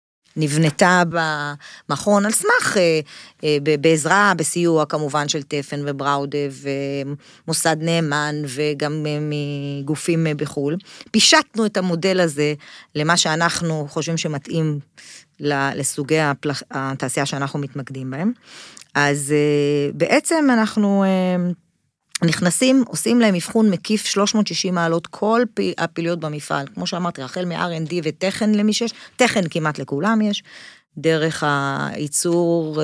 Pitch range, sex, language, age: 150-185 Hz, female, English, 30-49